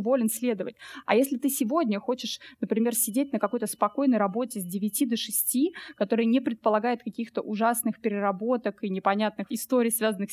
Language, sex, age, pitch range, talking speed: Russian, female, 20-39, 210-255 Hz, 155 wpm